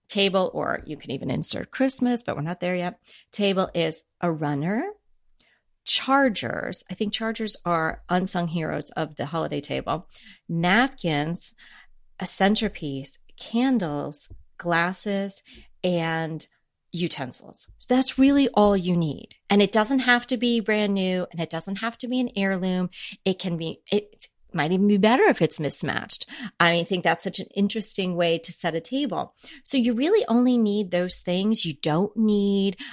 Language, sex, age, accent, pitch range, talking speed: English, female, 30-49, American, 170-215 Hz, 160 wpm